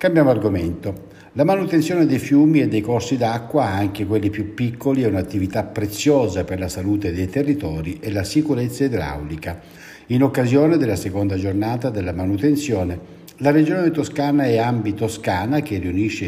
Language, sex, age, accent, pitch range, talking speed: Italian, male, 60-79, native, 100-135 Hz, 150 wpm